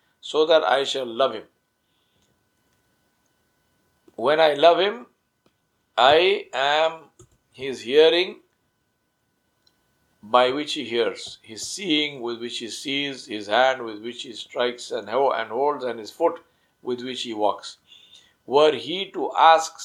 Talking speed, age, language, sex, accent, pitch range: 130 wpm, 60-79, English, male, Indian, 115-145 Hz